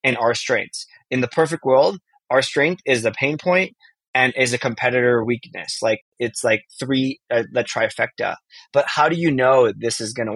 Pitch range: 115-145 Hz